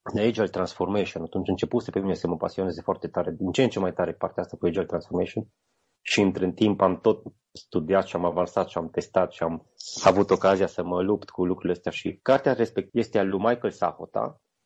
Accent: native